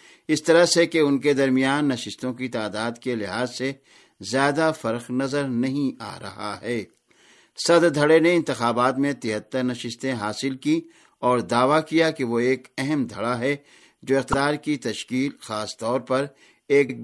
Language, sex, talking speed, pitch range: Urdu, male, 160 wpm, 120-150 Hz